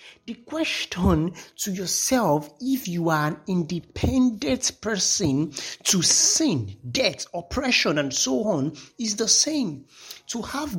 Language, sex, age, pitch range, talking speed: English, male, 50-69, 150-220 Hz, 120 wpm